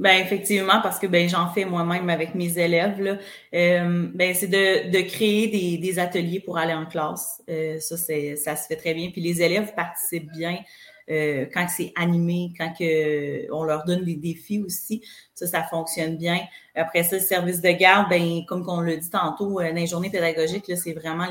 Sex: female